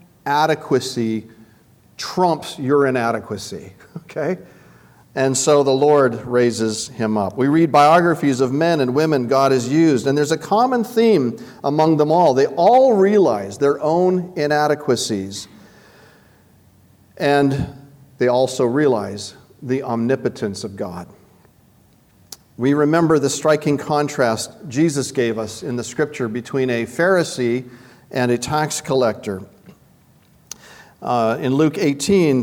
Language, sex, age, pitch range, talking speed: English, male, 40-59, 125-165 Hz, 120 wpm